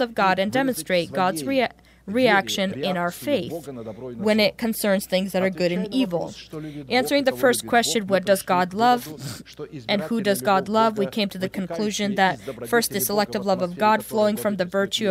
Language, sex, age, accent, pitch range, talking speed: English, female, 20-39, American, 185-225 Hz, 190 wpm